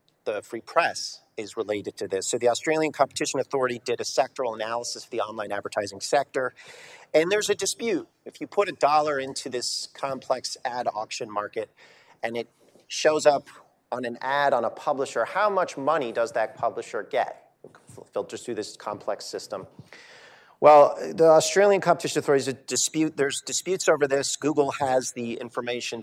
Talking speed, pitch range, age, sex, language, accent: 175 wpm, 120-175 Hz, 40-59, male, English, American